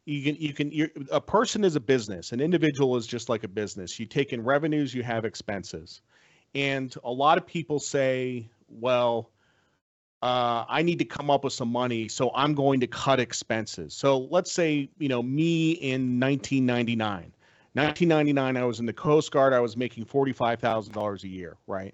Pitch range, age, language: 115-150 Hz, 40-59, English